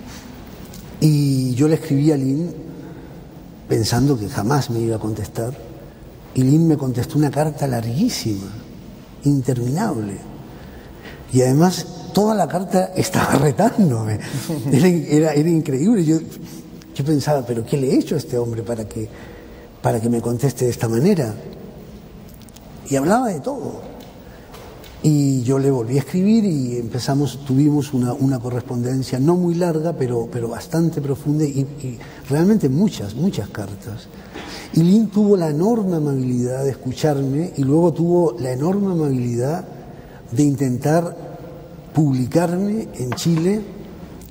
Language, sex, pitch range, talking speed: Spanish, male, 125-170 Hz, 135 wpm